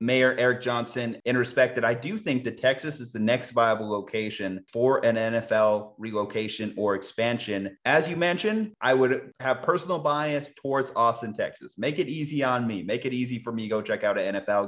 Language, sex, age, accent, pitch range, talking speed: English, male, 30-49, American, 110-130 Hz, 200 wpm